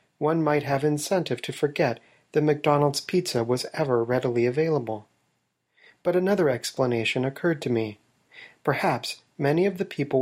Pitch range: 125-160 Hz